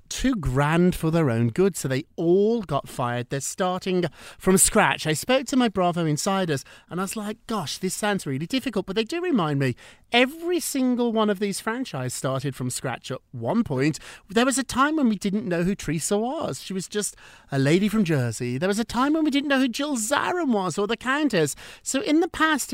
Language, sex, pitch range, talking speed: English, male, 145-230 Hz, 220 wpm